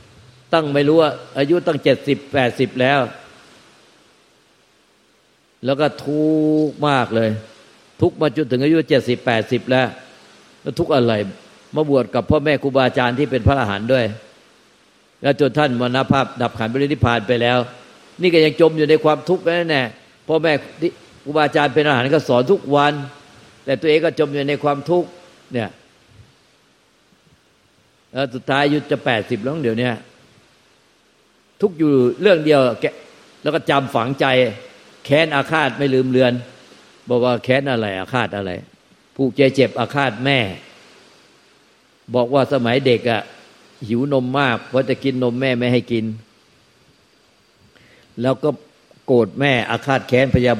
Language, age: Thai, 60-79